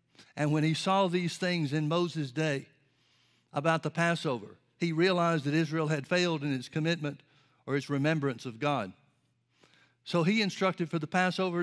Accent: American